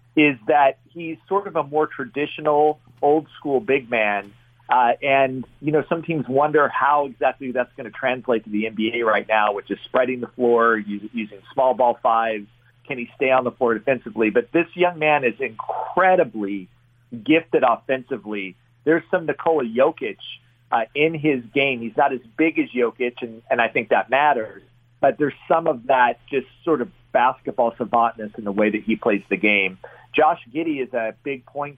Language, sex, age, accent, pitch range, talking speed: English, male, 40-59, American, 115-140 Hz, 185 wpm